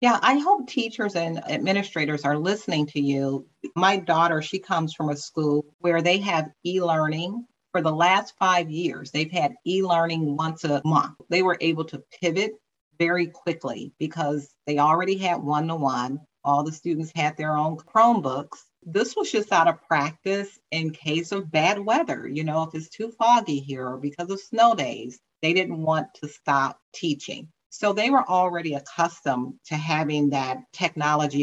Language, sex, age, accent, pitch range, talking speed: English, female, 40-59, American, 150-190 Hz, 170 wpm